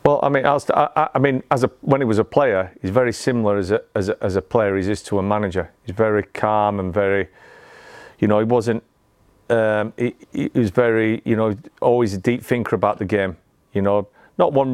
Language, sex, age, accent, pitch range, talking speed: English, male, 40-59, British, 100-110 Hz, 220 wpm